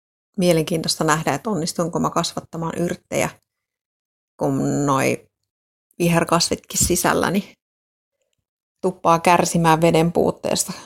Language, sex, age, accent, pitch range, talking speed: Finnish, female, 30-49, native, 155-175 Hz, 85 wpm